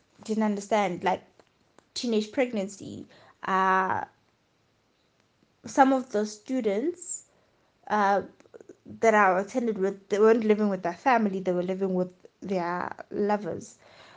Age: 20-39